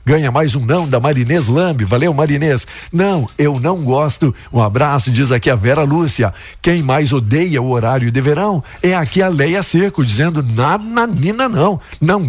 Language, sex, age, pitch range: Portuguese, male, 60-79, 125-165 Hz